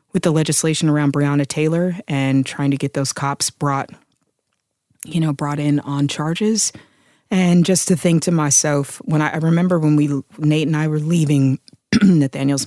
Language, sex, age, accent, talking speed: English, female, 20-39, American, 175 wpm